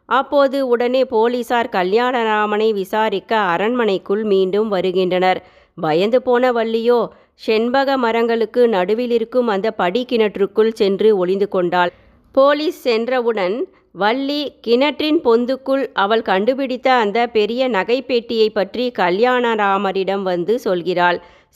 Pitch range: 195-250 Hz